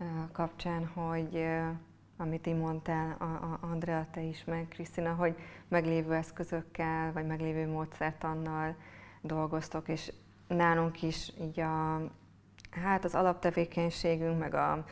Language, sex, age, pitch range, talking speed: Hungarian, female, 30-49, 155-165 Hz, 115 wpm